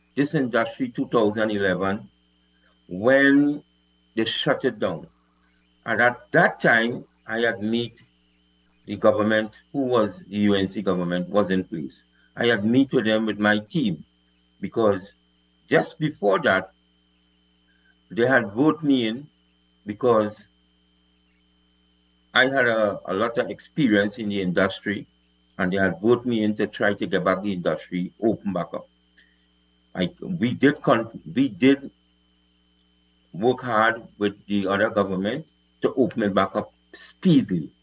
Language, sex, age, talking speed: English, male, 50-69, 140 wpm